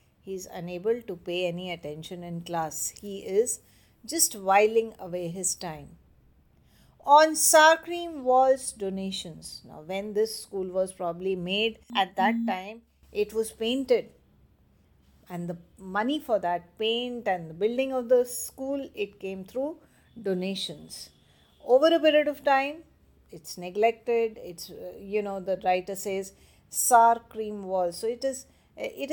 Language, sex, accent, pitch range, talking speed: English, female, Indian, 190-255 Hz, 145 wpm